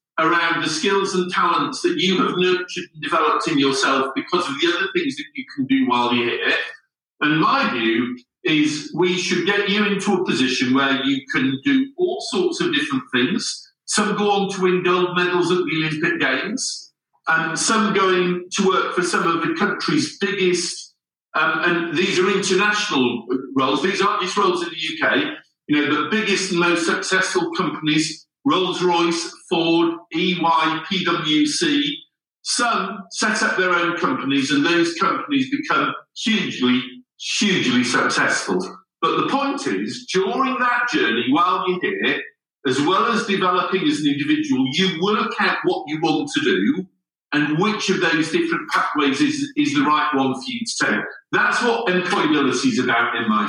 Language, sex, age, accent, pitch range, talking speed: English, male, 50-69, British, 160-265 Hz, 170 wpm